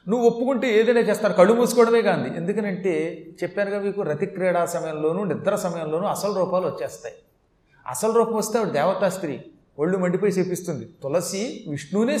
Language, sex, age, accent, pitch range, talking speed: Telugu, male, 30-49, native, 160-225 Hz, 150 wpm